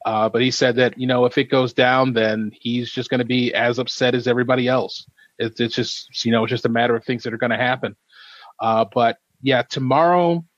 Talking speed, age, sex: 240 wpm, 30-49, male